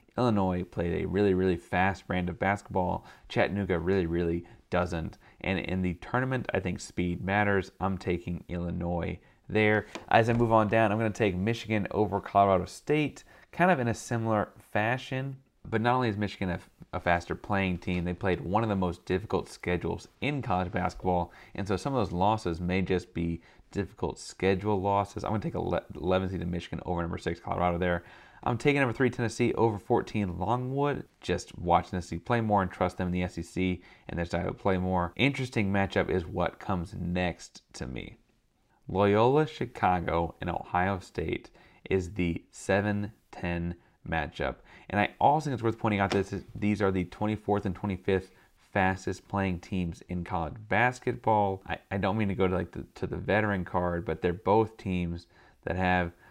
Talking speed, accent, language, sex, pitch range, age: 185 wpm, American, English, male, 90-110 Hz, 30-49